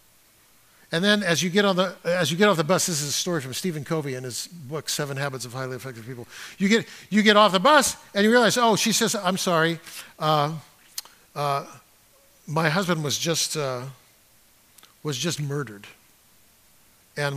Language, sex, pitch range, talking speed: English, male, 160-245 Hz, 190 wpm